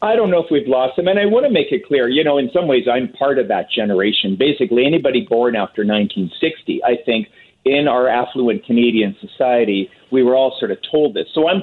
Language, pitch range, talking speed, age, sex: English, 120-160 Hz, 230 wpm, 40-59, male